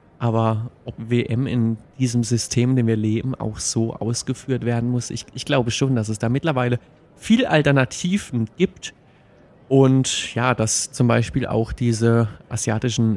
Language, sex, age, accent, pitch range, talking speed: German, male, 30-49, German, 115-135 Hz, 155 wpm